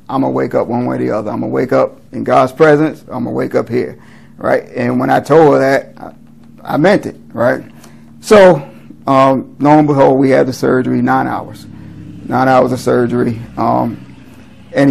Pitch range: 120-140 Hz